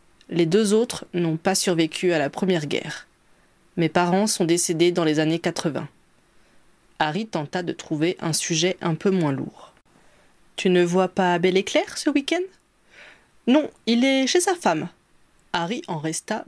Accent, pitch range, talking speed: French, 165-225 Hz, 175 wpm